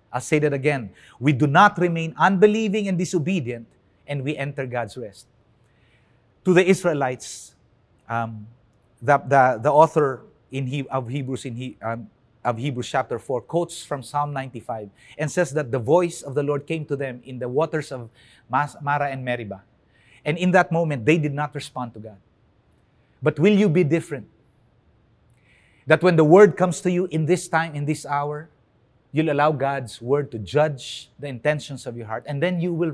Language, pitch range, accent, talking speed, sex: English, 120-165 Hz, Filipino, 180 wpm, male